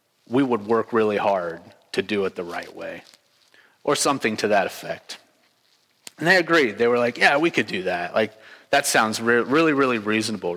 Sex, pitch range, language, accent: male, 120-165 Hz, English, American